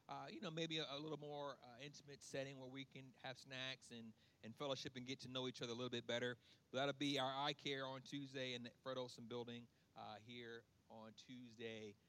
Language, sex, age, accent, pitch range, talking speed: English, male, 40-59, American, 125-150 Hz, 230 wpm